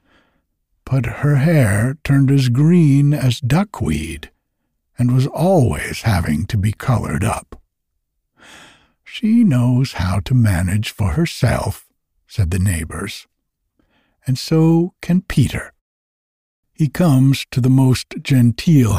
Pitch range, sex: 100-140 Hz, male